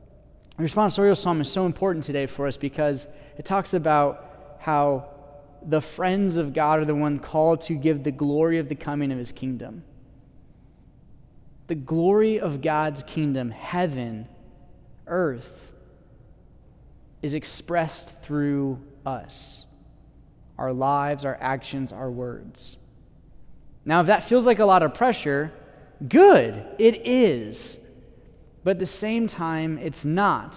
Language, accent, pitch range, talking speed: English, American, 140-170 Hz, 135 wpm